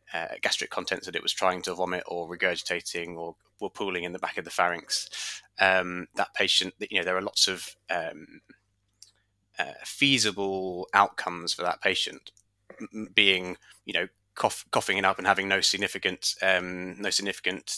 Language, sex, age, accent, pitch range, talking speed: English, male, 20-39, British, 90-100 Hz, 165 wpm